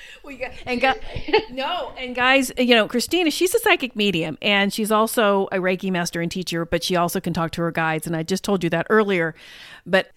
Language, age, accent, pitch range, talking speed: English, 40-59, American, 190-255 Hz, 200 wpm